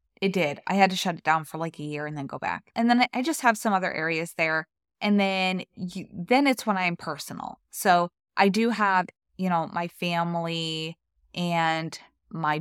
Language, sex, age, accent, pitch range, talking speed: English, female, 20-39, American, 160-210 Hz, 205 wpm